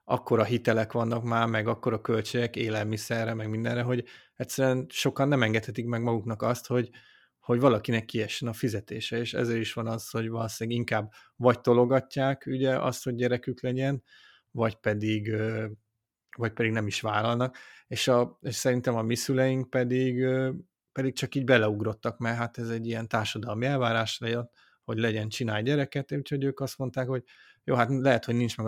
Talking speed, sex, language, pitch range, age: 175 wpm, male, Hungarian, 115-130 Hz, 30-49